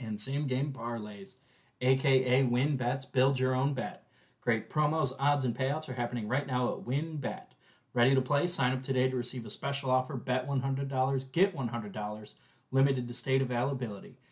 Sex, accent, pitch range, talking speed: male, American, 120-145 Hz, 170 wpm